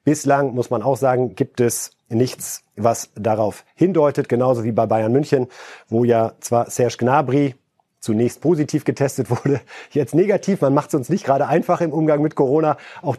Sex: male